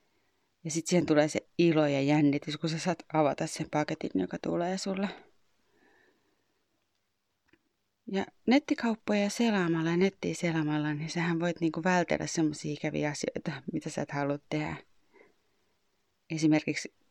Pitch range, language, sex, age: 155-195 Hz, Finnish, female, 30-49